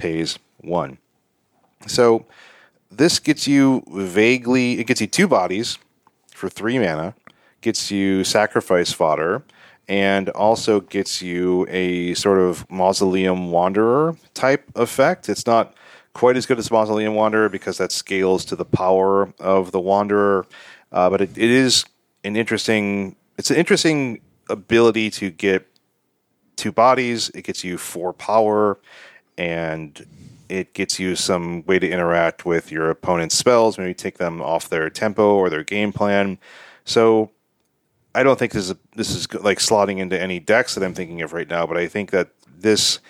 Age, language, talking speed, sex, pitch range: 30-49, English, 160 wpm, male, 90-115 Hz